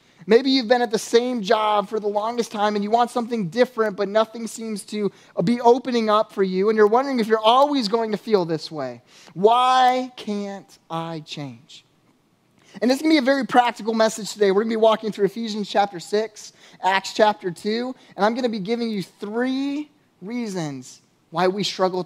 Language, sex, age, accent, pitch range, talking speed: English, male, 20-39, American, 180-230 Hz, 205 wpm